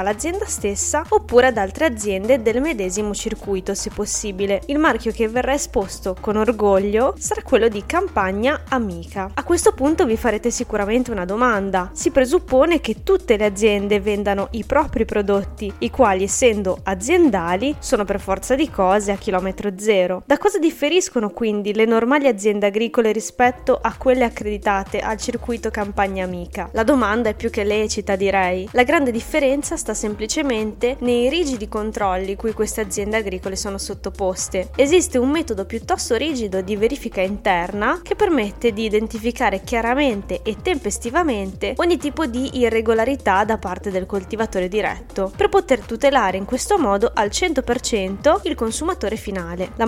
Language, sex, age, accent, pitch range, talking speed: Italian, female, 20-39, native, 200-260 Hz, 150 wpm